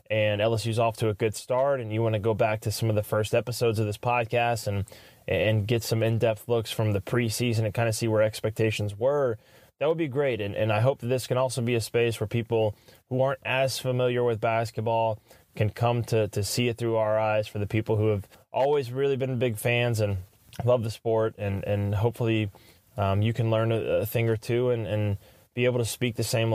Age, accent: 20-39, American